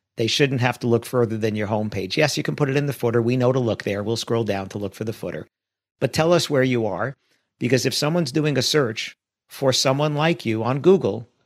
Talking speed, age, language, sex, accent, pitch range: 250 wpm, 50-69, English, male, American, 115-145 Hz